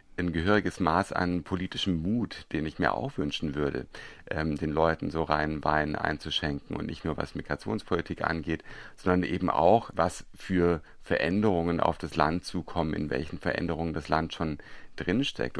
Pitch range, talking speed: 80-90 Hz, 160 wpm